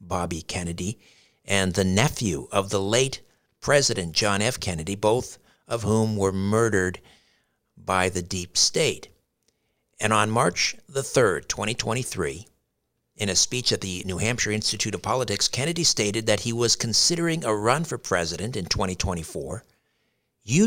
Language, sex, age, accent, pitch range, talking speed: English, male, 50-69, American, 95-120 Hz, 140 wpm